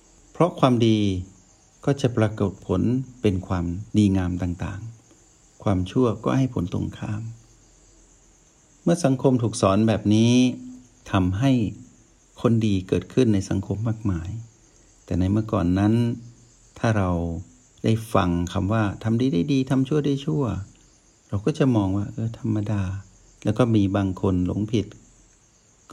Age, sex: 60-79, male